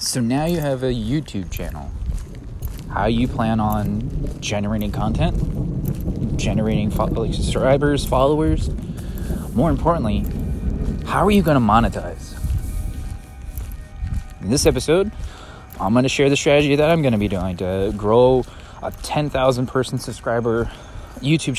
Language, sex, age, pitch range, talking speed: English, male, 20-39, 95-125 Hz, 130 wpm